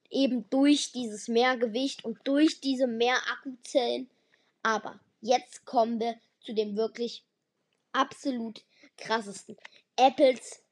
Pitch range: 225-290 Hz